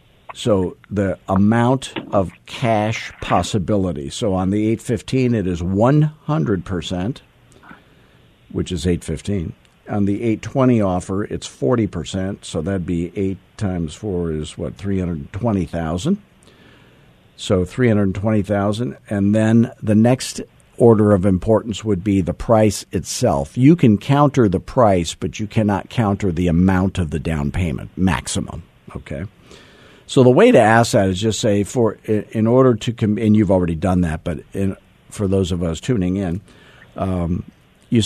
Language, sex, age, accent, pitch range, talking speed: English, male, 50-69, American, 90-110 Hz, 145 wpm